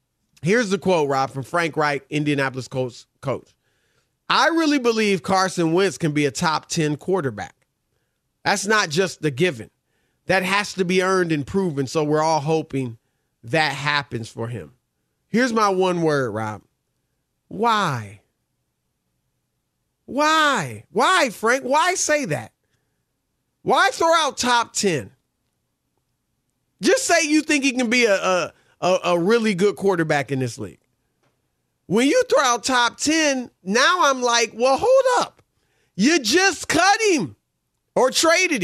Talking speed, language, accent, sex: 145 wpm, English, American, male